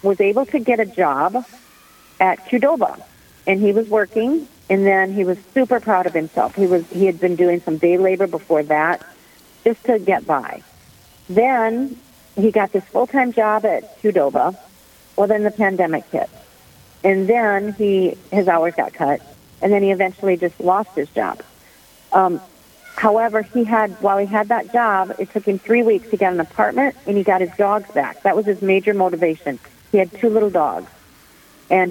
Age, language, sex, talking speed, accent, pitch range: 40-59, English, female, 180 wpm, American, 175-215 Hz